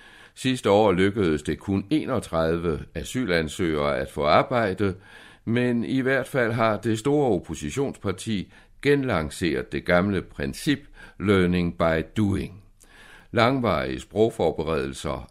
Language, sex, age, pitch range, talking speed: Danish, male, 60-79, 80-110 Hz, 105 wpm